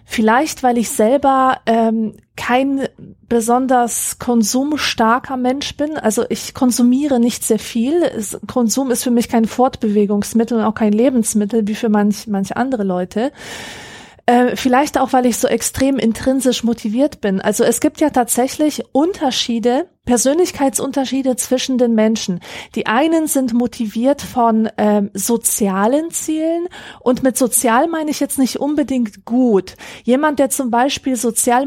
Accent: German